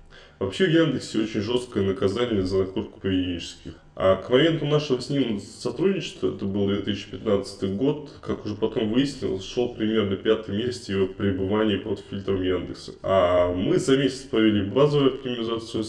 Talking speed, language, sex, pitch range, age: 150 wpm, Russian, male, 95-125 Hz, 20-39